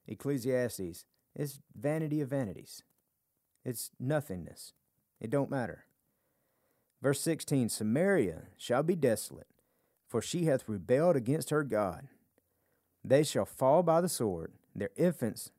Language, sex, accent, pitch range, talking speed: English, male, American, 105-140 Hz, 120 wpm